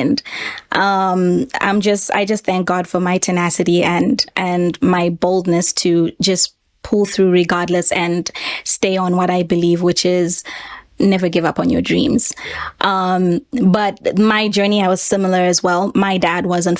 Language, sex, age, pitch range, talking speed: English, female, 20-39, 180-210 Hz, 160 wpm